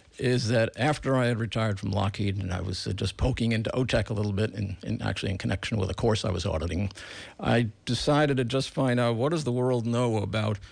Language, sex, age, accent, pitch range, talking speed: English, male, 60-79, American, 105-125 Hz, 230 wpm